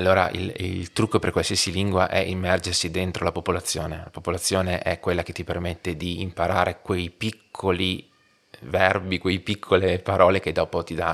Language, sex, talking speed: Italian, male, 165 wpm